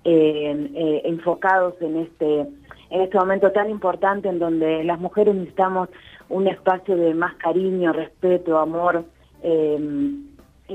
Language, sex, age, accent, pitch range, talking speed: Spanish, female, 30-49, Argentinian, 165-190 Hz, 130 wpm